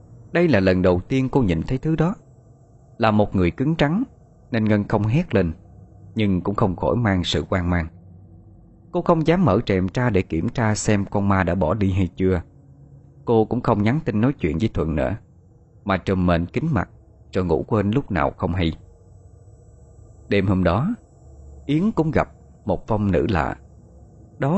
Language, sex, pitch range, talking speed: Vietnamese, male, 90-130 Hz, 190 wpm